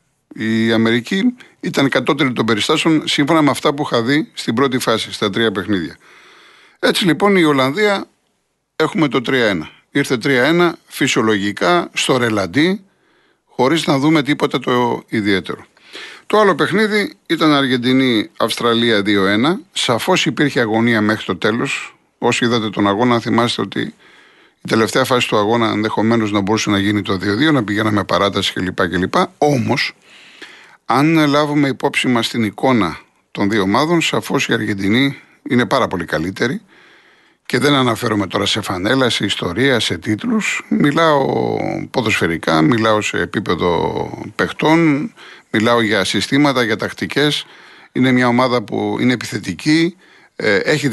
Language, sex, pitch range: Greek, male, 110-150 Hz